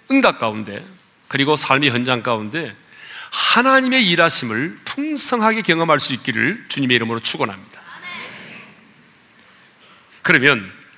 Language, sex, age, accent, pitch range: Korean, male, 40-59, native, 120-200 Hz